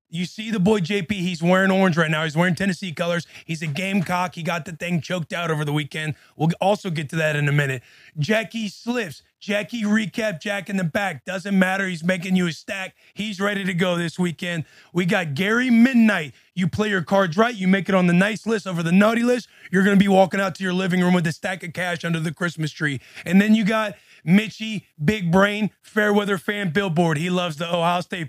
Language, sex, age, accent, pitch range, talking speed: English, male, 30-49, American, 165-200 Hz, 235 wpm